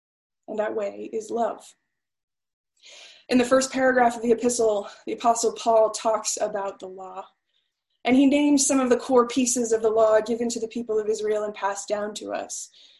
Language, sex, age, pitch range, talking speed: English, female, 20-39, 215-265 Hz, 190 wpm